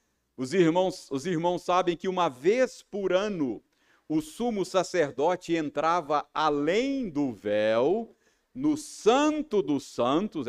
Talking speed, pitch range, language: 115 wpm, 150-235 Hz, Portuguese